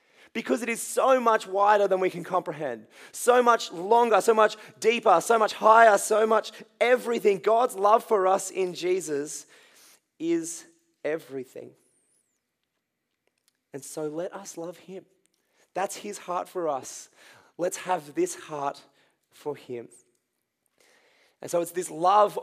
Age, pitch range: 20-39, 155-225 Hz